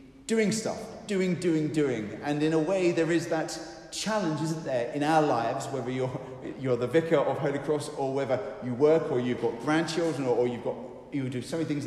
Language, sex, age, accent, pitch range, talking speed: English, male, 30-49, British, 130-170 Hz, 220 wpm